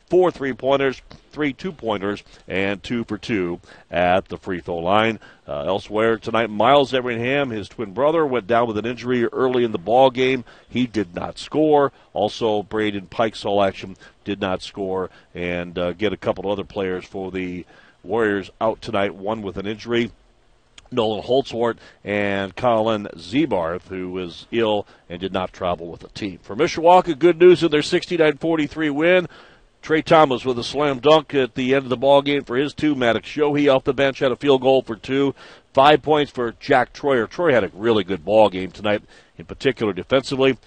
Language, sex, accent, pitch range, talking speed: English, male, American, 105-140 Hz, 180 wpm